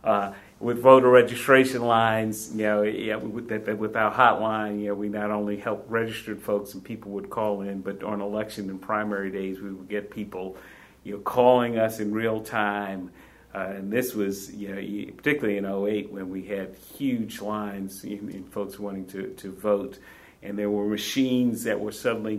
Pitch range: 100-110 Hz